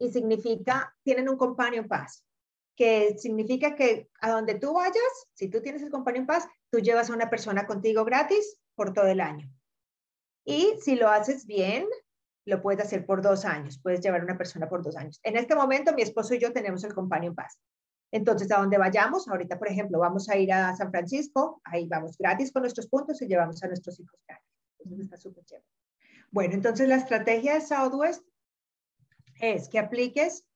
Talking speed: 190 wpm